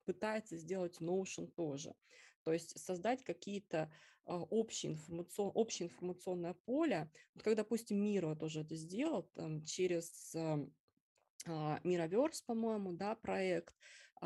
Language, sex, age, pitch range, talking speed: Russian, female, 20-39, 165-205 Hz, 105 wpm